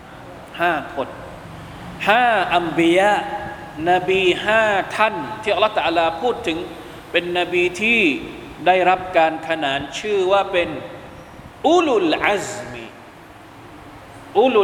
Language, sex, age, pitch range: Thai, male, 20-39, 135-180 Hz